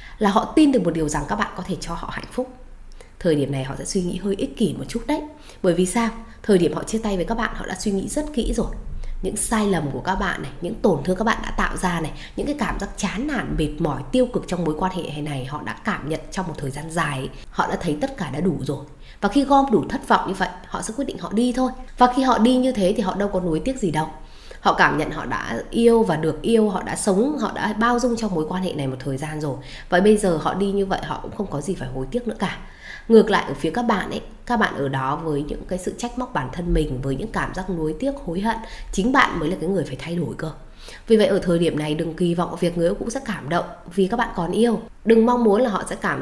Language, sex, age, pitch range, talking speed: Vietnamese, female, 20-39, 160-225 Hz, 300 wpm